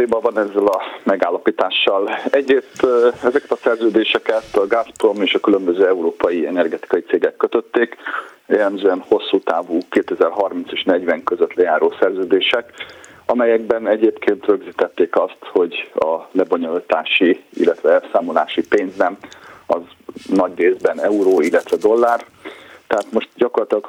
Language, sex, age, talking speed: Hungarian, male, 40-59, 110 wpm